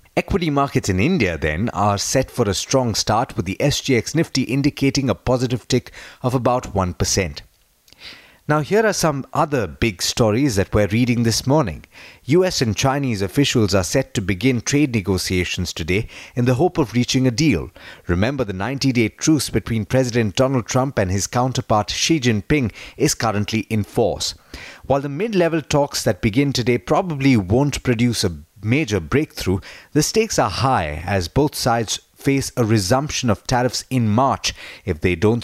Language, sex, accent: English, male, Indian